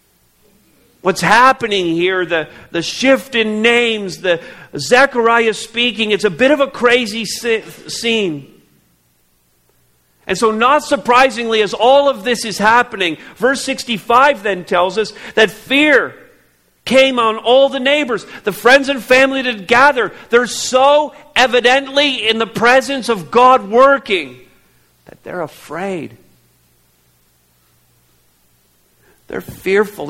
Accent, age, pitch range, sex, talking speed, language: American, 50-69, 140-230 Hz, male, 120 wpm, English